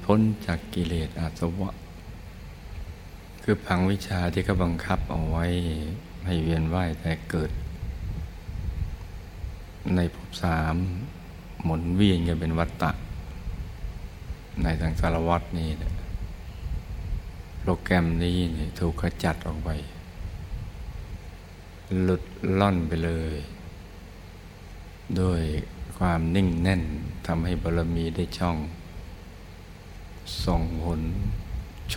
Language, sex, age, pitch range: Thai, male, 60-79, 80-90 Hz